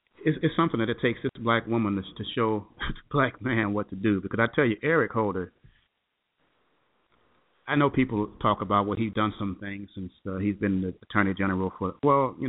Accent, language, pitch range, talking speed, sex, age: American, English, 105-130 Hz, 200 wpm, male, 40-59